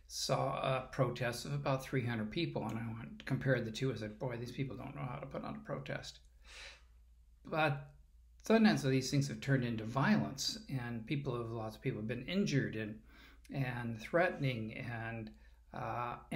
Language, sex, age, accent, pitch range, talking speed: English, male, 50-69, American, 110-140 Hz, 180 wpm